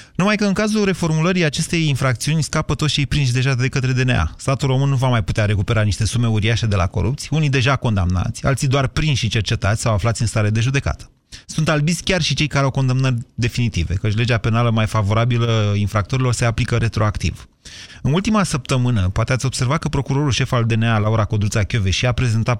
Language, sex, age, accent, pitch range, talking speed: Romanian, male, 30-49, native, 110-140 Hz, 200 wpm